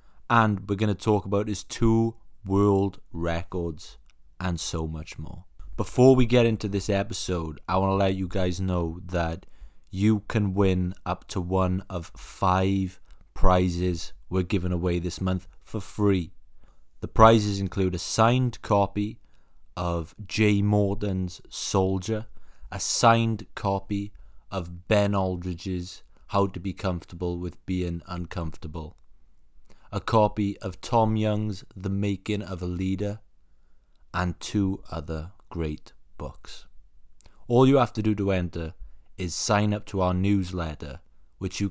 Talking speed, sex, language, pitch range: 140 wpm, male, English, 85-100 Hz